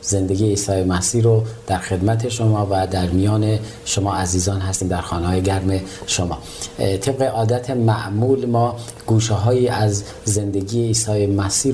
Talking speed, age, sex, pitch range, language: 145 wpm, 40-59, male, 95-115 Hz, Persian